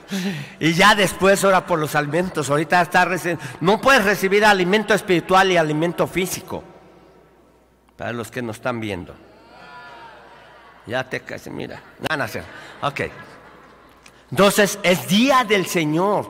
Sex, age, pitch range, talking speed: male, 50-69, 130-175 Hz, 135 wpm